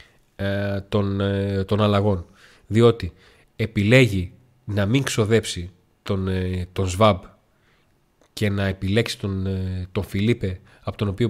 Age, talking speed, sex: 40-59, 100 wpm, male